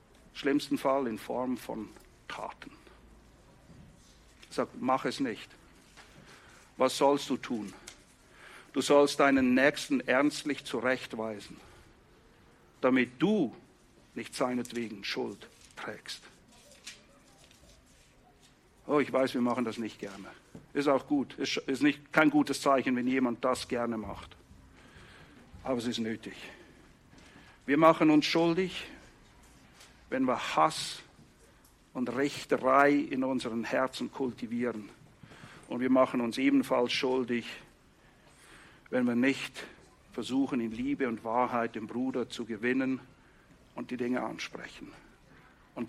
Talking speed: 110 wpm